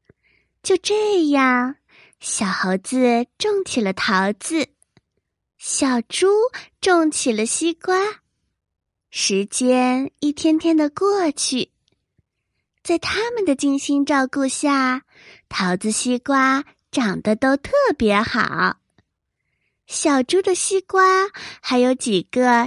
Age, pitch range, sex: 20-39, 230-320 Hz, female